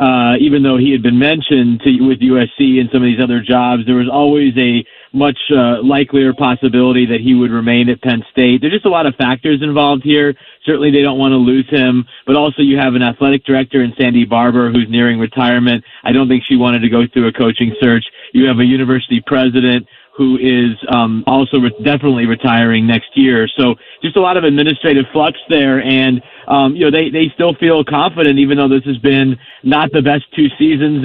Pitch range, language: 125-140 Hz, English